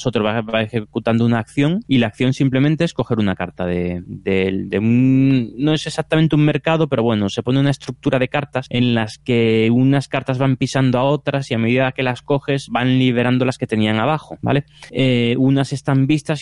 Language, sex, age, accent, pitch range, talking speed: Spanish, male, 20-39, Spanish, 110-135 Hz, 210 wpm